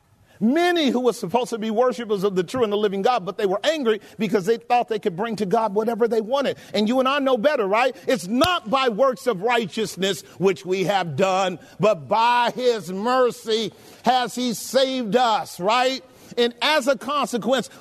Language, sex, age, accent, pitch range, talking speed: English, male, 50-69, American, 200-250 Hz, 200 wpm